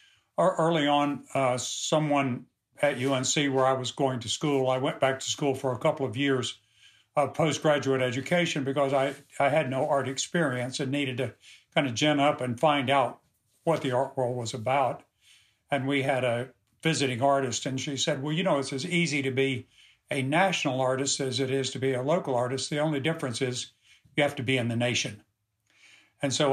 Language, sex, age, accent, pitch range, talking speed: English, male, 60-79, American, 125-145 Hz, 200 wpm